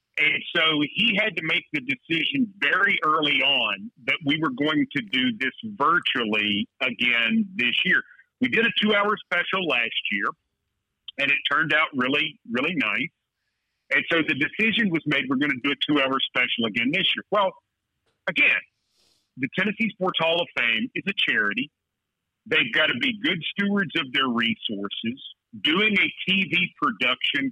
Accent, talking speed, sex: American, 165 wpm, male